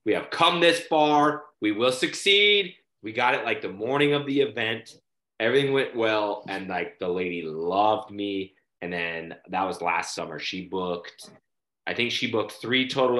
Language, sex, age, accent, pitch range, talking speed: English, male, 30-49, American, 100-150 Hz, 180 wpm